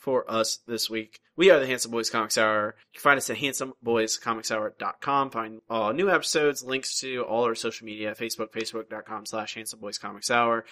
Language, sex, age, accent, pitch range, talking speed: English, male, 20-39, American, 115-145 Hz, 195 wpm